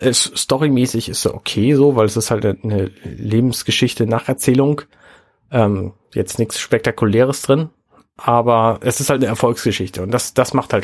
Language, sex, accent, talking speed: German, male, German, 160 wpm